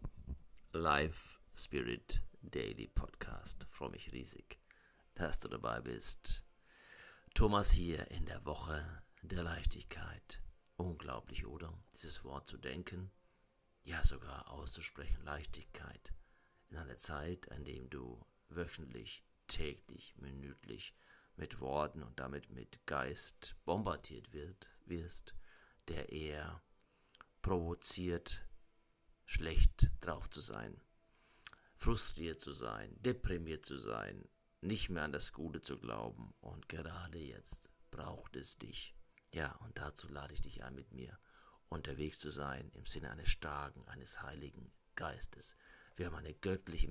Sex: male